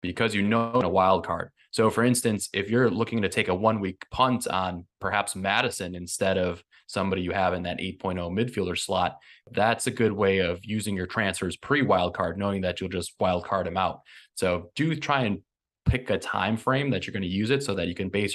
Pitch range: 95-115 Hz